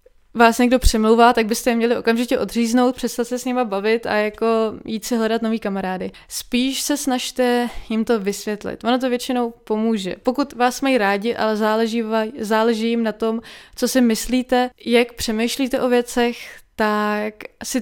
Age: 20-39